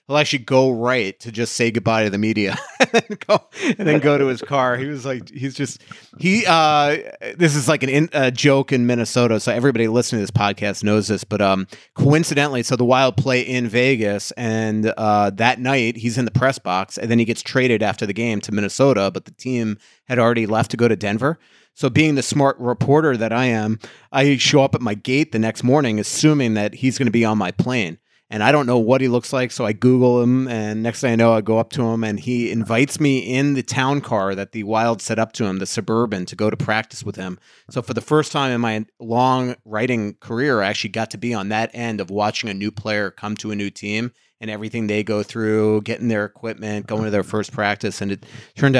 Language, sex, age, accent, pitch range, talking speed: English, male, 30-49, American, 105-130 Hz, 235 wpm